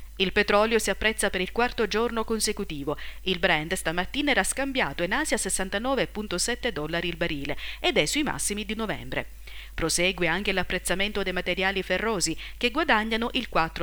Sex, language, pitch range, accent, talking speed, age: female, Italian, 170-230 Hz, native, 155 wpm, 40-59